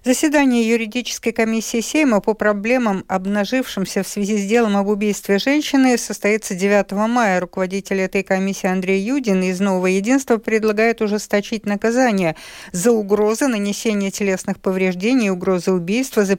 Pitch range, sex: 185-225 Hz, female